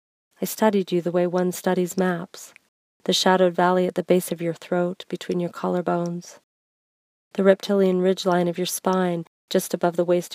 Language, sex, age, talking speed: English, female, 40-59, 175 wpm